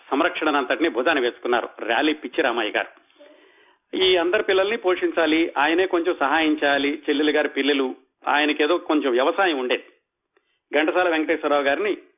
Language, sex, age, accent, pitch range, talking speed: Telugu, male, 40-59, native, 145-190 Hz, 120 wpm